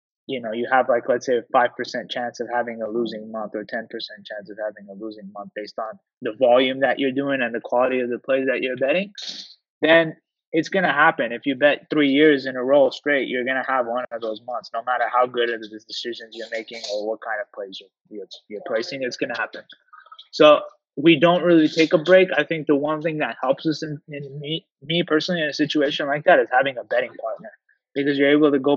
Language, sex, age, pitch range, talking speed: English, male, 20-39, 120-155 Hz, 245 wpm